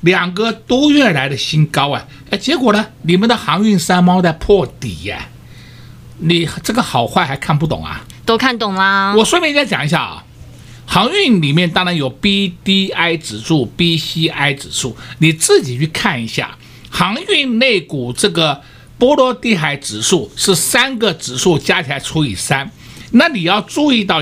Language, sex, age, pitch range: Chinese, male, 60-79, 145-215 Hz